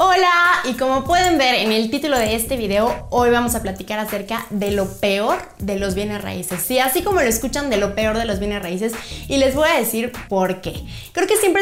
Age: 20-39